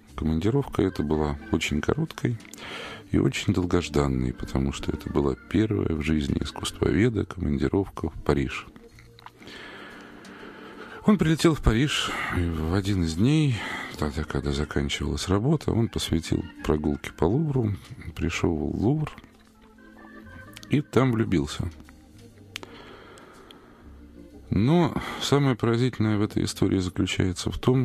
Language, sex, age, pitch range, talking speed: Russian, male, 40-59, 80-115 Hz, 110 wpm